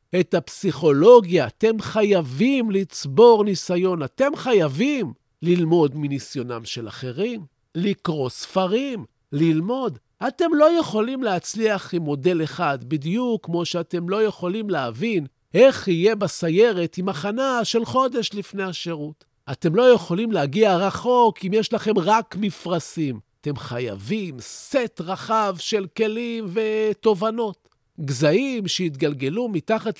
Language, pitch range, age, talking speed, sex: Hebrew, 160-225 Hz, 50-69, 115 wpm, male